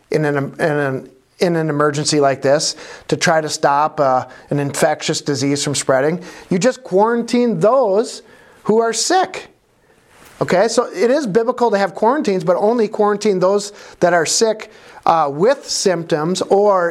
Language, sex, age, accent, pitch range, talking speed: English, male, 50-69, American, 150-215 Hz, 160 wpm